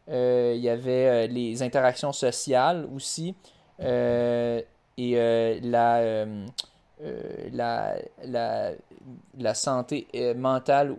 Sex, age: male, 20-39